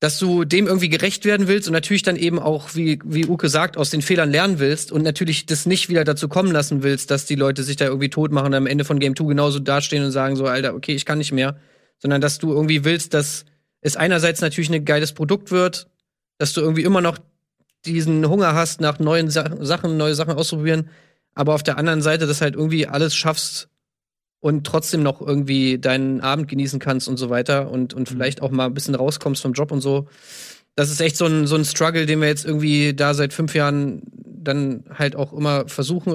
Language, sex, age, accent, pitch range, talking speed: German, male, 30-49, German, 140-160 Hz, 225 wpm